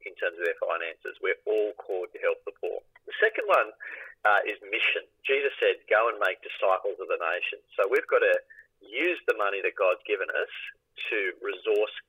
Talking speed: 195 wpm